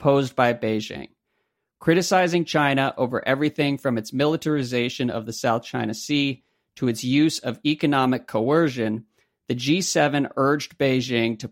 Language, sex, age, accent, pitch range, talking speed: English, male, 40-59, American, 115-140 Hz, 130 wpm